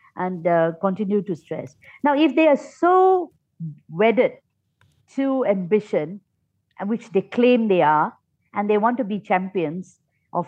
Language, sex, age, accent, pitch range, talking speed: English, female, 50-69, Indian, 175-235 Hz, 145 wpm